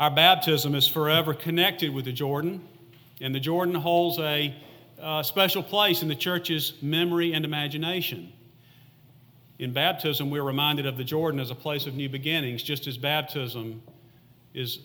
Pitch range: 130-165 Hz